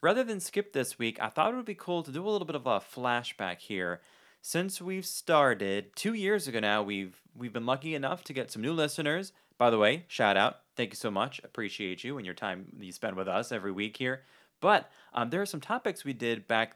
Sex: male